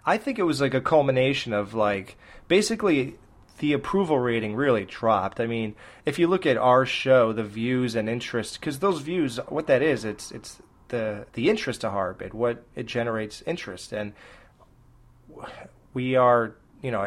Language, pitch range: English, 110-145 Hz